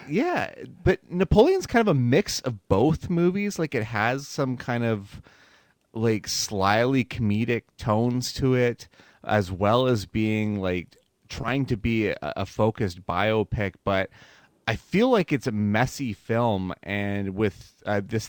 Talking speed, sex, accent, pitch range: 150 wpm, male, American, 95-120 Hz